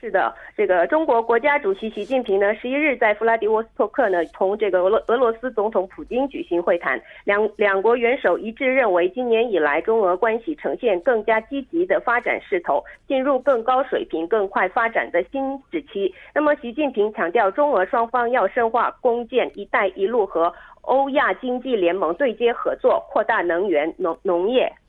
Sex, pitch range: female, 205-280 Hz